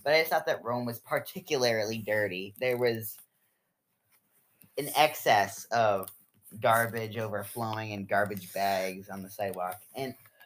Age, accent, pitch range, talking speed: 20-39, American, 105-135 Hz, 130 wpm